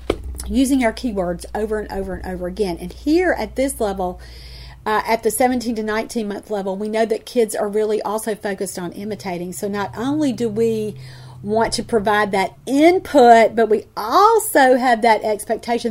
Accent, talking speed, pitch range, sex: American, 180 wpm, 210-260 Hz, female